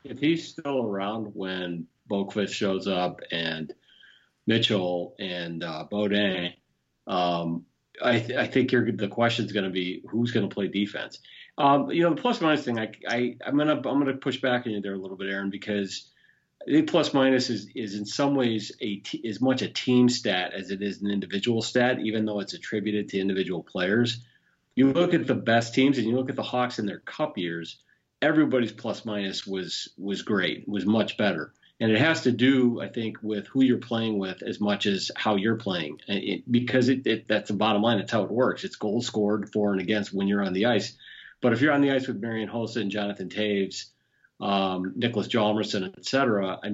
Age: 40-59